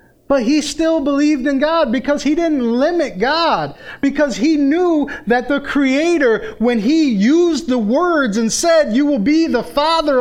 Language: English